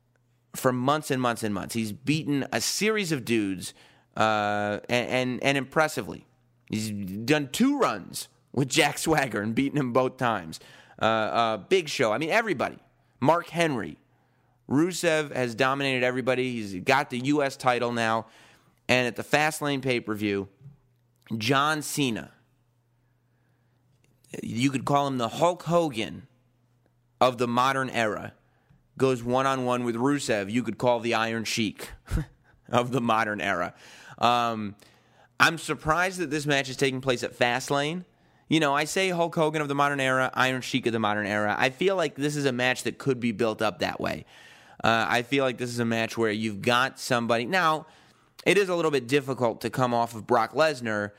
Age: 30-49